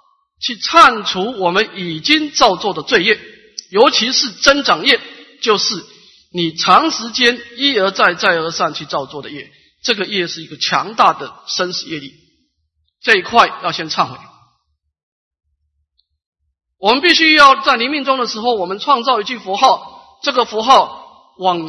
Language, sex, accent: Chinese, male, native